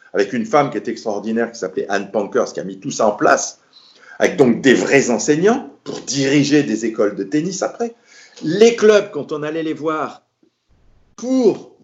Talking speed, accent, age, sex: 190 wpm, French, 50-69, male